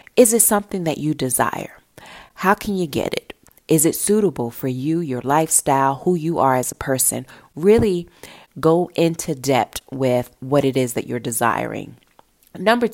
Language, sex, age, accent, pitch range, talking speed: English, female, 30-49, American, 135-180 Hz, 165 wpm